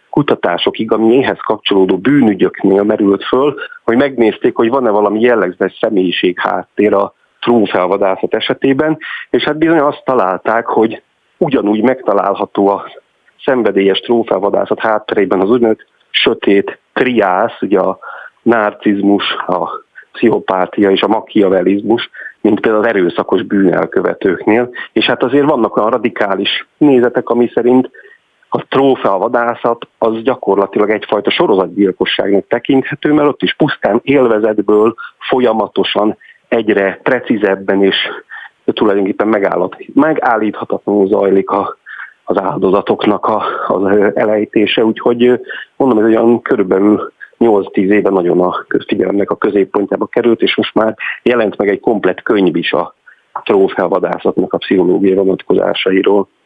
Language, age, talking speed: Hungarian, 40-59, 115 wpm